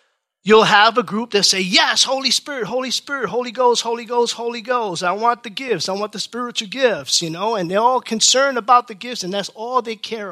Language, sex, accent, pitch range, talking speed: English, male, American, 170-235 Hz, 235 wpm